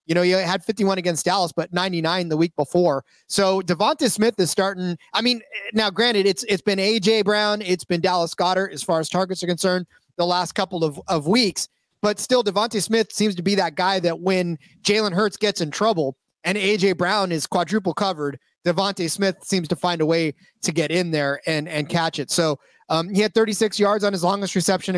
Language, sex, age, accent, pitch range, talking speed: English, male, 30-49, American, 170-200 Hz, 215 wpm